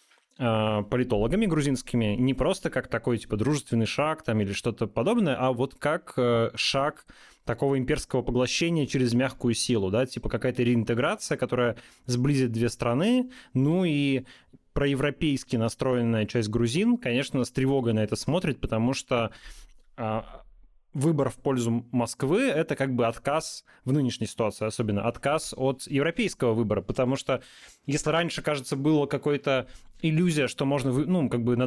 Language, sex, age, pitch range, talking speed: Russian, male, 20-39, 120-145 Hz, 140 wpm